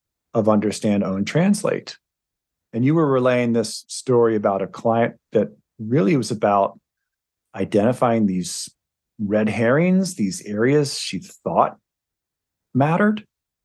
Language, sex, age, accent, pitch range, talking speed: English, male, 40-59, American, 110-150 Hz, 115 wpm